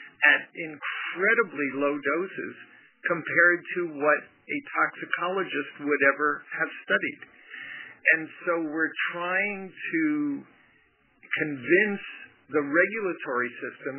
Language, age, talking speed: English, 50-69, 95 wpm